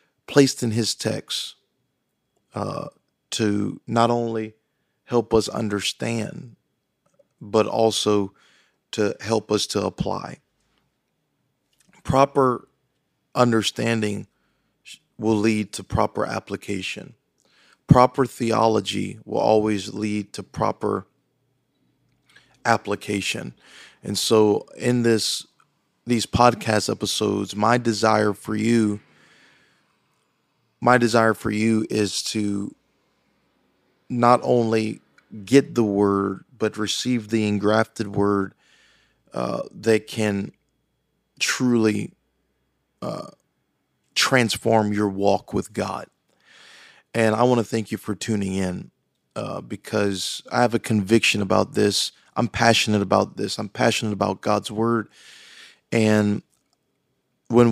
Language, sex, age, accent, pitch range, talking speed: English, male, 40-59, American, 105-115 Hz, 100 wpm